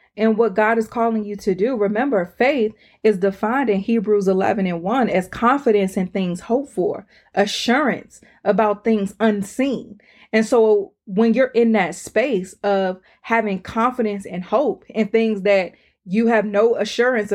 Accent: American